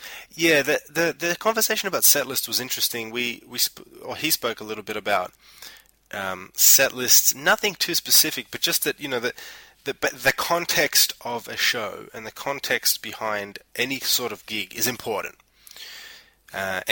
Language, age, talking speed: English, 20-39, 165 wpm